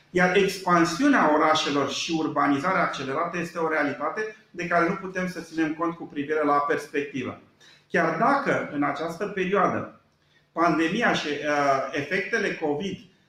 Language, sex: Romanian, male